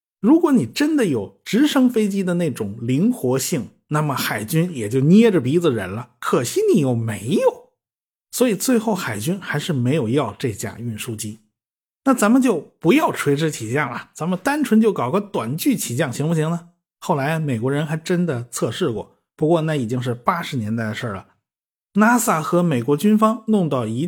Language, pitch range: Chinese, 125-205 Hz